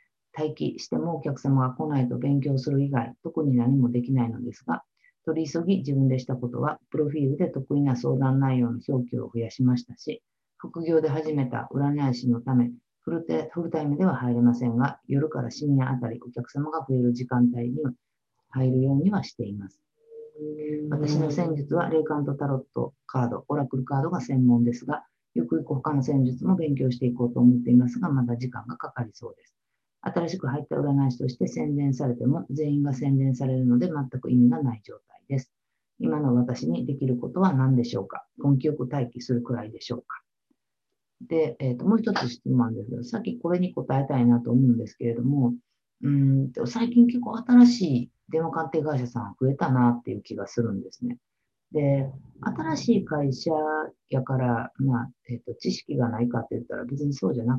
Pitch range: 120-150 Hz